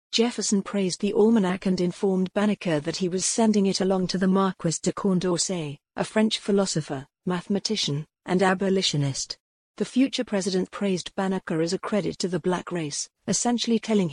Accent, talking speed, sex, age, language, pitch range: British, 160 wpm, female, 50-69, English, 175-200 Hz